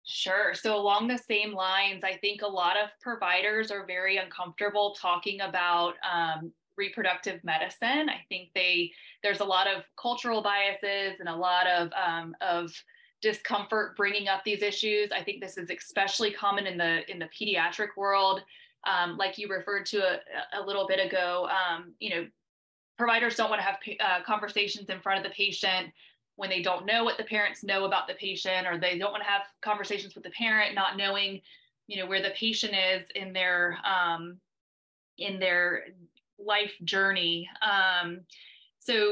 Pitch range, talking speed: 185-210 Hz, 175 wpm